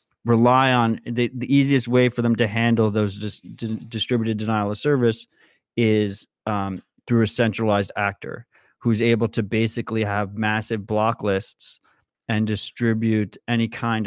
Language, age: English, 30-49